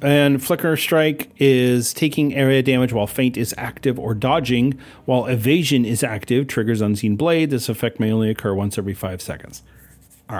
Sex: male